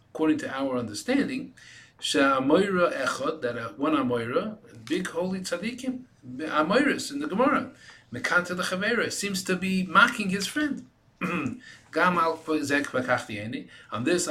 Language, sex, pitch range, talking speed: English, male, 125-190 Hz, 115 wpm